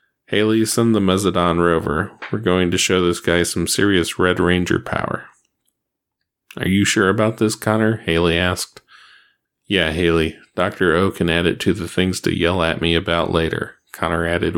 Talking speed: 175 wpm